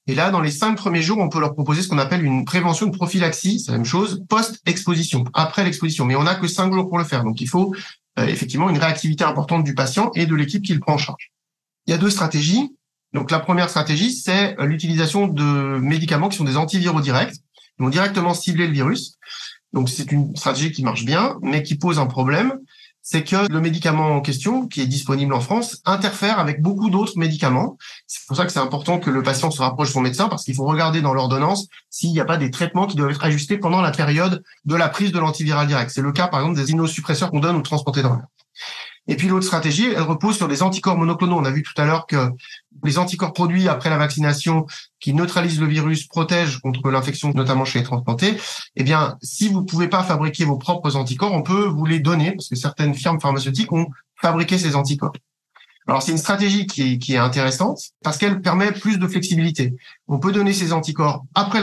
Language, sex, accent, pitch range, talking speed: French, male, French, 145-185 Hz, 230 wpm